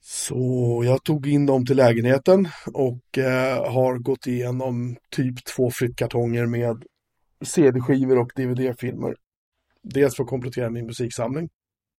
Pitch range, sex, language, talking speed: 120-145 Hz, male, Swedish, 125 wpm